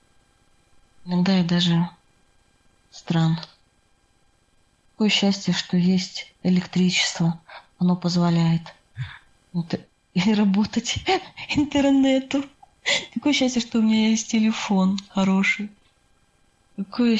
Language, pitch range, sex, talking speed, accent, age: Russian, 175-210 Hz, female, 85 wpm, native, 20-39